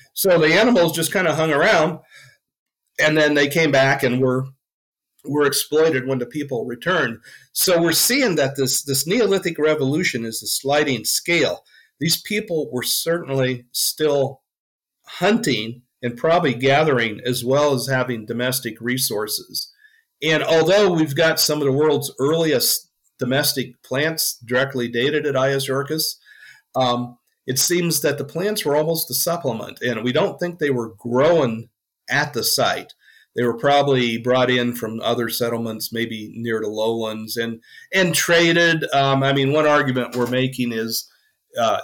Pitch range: 115-155 Hz